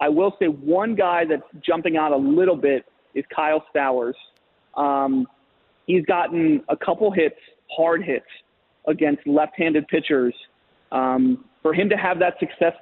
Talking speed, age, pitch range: 150 wpm, 30-49, 145-185 Hz